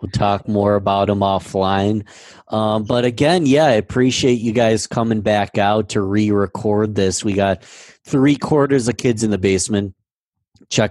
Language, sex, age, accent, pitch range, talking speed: English, male, 20-39, American, 90-105 Hz, 165 wpm